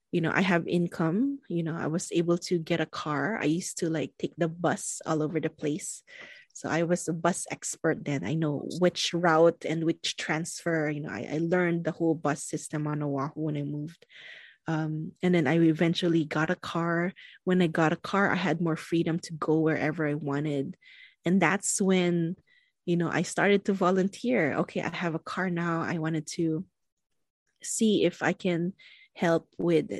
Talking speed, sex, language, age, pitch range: 200 wpm, female, English, 20-39, 160-195 Hz